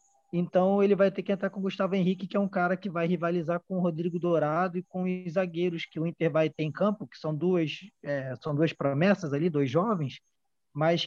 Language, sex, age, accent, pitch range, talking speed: Portuguese, male, 20-39, Brazilian, 155-190 Hz, 235 wpm